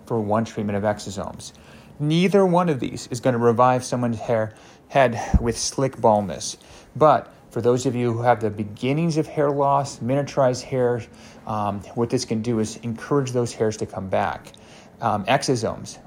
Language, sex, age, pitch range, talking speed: English, male, 30-49, 110-135 Hz, 170 wpm